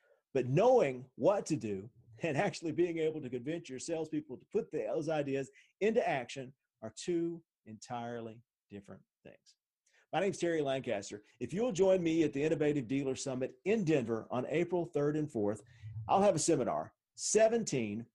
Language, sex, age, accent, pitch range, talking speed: English, male, 50-69, American, 125-175 Hz, 165 wpm